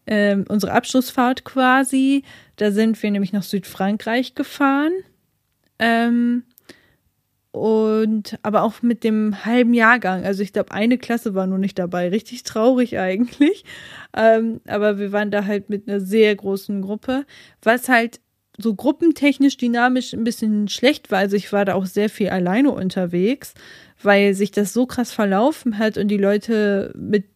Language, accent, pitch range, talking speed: German, German, 200-235 Hz, 155 wpm